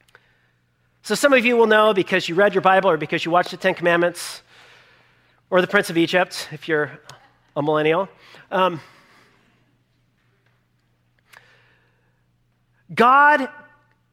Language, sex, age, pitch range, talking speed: English, male, 40-59, 160-220 Hz, 125 wpm